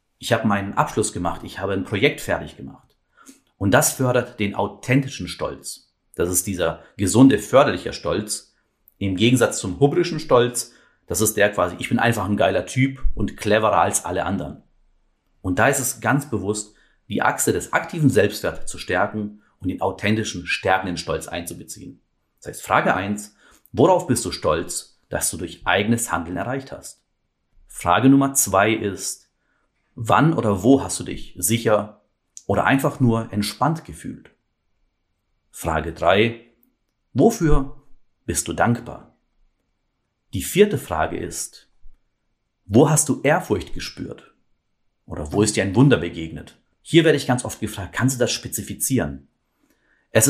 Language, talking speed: German, 150 wpm